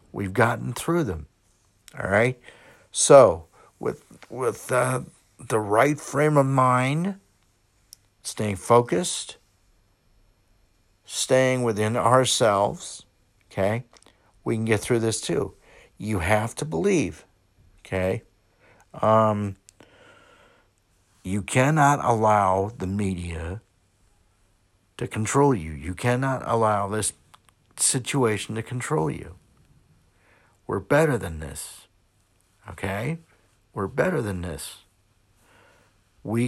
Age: 60-79